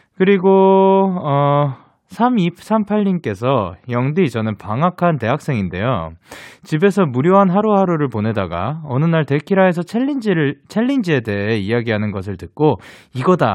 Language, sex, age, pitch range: Korean, male, 20-39, 105-170 Hz